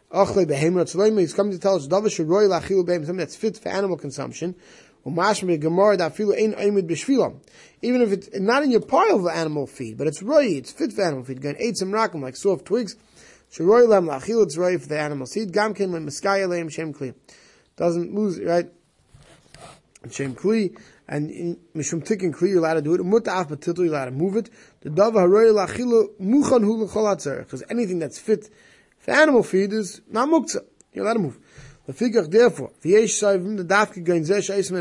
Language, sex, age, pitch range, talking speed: English, male, 20-39, 155-205 Hz, 140 wpm